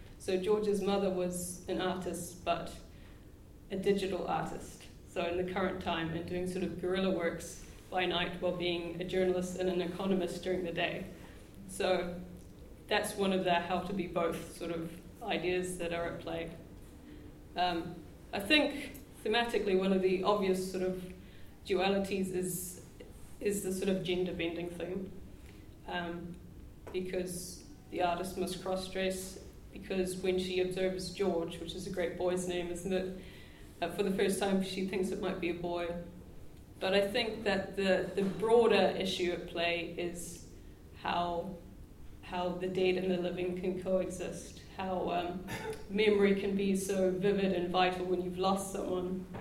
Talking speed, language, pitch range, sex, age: 160 wpm, English, 175-190 Hz, female, 20-39